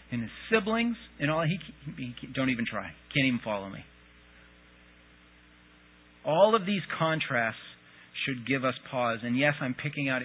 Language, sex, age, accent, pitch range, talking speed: English, male, 40-59, American, 120-165 Hz, 165 wpm